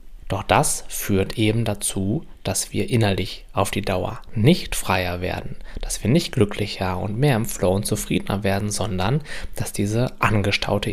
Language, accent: German, German